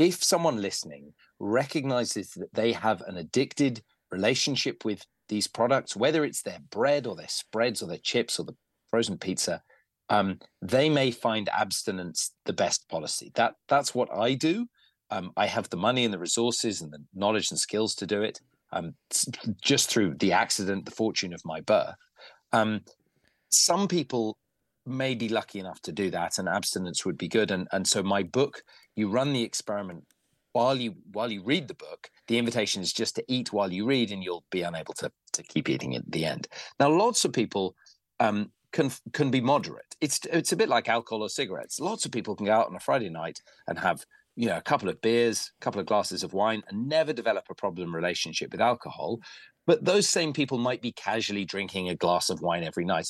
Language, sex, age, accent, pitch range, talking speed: English, male, 30-49, British, 100-130 Hz, 205 wpm